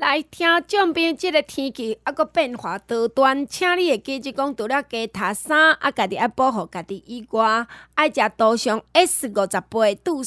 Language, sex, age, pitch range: Chinese, female, 20-39, 210-285 Hz